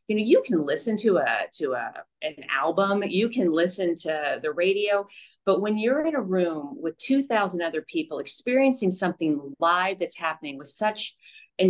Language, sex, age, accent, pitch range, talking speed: English, female, 40-59, American, 170-215 Hz, 180 wpm